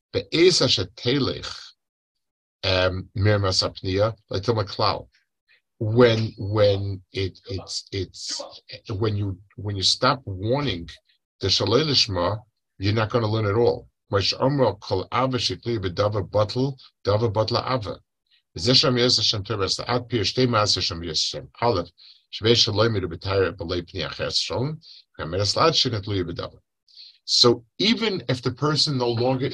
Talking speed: 155 wpm